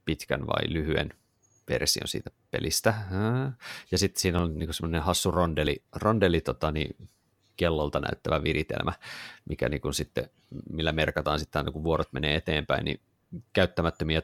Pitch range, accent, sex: 80-105 Hz, native, male